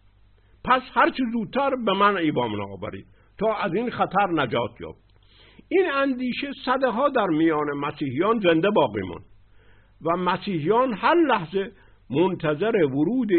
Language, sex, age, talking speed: Persian, male, 60-79, 130 wpm